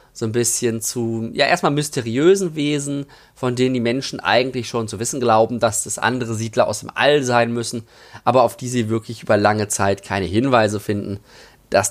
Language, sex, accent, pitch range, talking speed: German, male, German, 115-140 Hz, 190 wpm